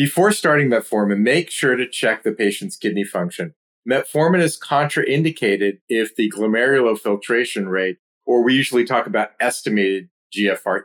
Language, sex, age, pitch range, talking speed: English, male, 40-59, 100-135 Hz, 145 wpm